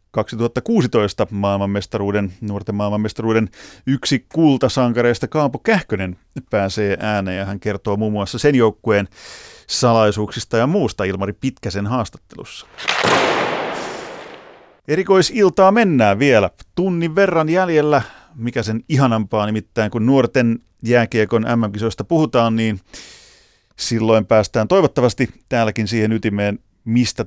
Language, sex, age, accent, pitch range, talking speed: Finnish, male, 30-49, native, 105-125 Hz, 100 wpm